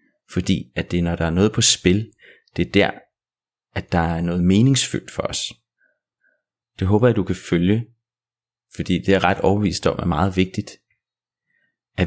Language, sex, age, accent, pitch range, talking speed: Danish, male, 30-49, native, 85-100 Hz, 180 wpm